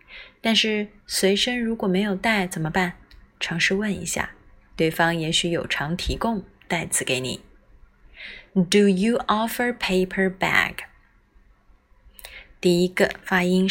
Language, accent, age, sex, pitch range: Chinese, native, 20-39, female, 175-200 Hz